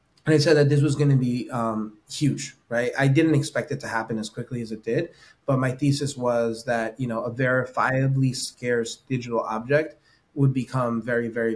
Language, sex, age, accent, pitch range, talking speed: English, male, 20-39, American, 115-135 Hz, 200 wpm